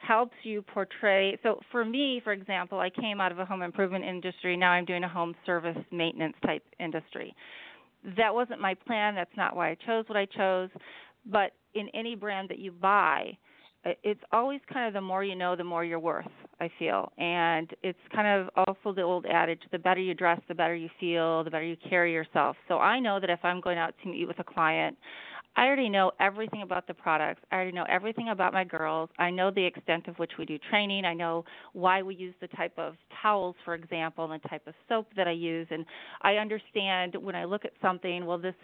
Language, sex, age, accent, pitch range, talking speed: English, female, 40-59, American, 170-200 Hz, 225 wpm